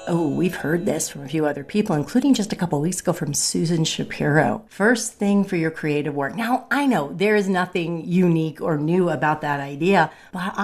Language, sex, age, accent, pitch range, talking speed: English, female, 40-59, American, 150-200 Hz, 215 wpm